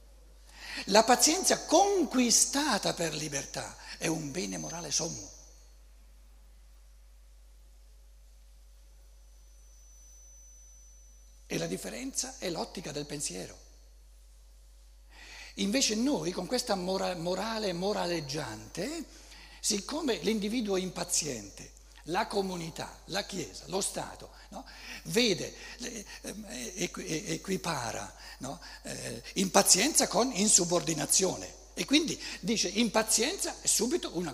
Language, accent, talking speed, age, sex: Italian, native, 90 wpm, 60-79, male